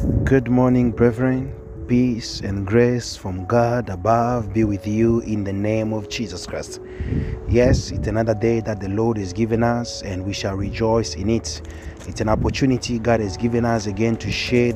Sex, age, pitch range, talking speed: male, 30-49, 100-120 Hz, 180 wpm